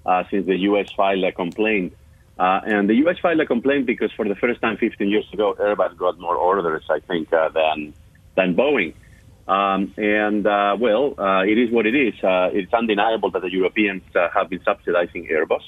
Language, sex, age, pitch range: English, male, 40-59, 90-115 Hz